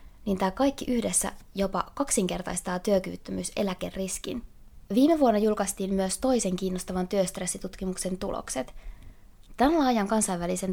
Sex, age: female, 20-39